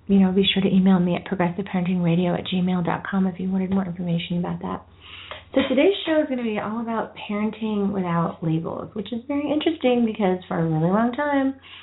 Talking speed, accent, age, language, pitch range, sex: 205 wpm, American, 30-49, English, 175-210 Hz, female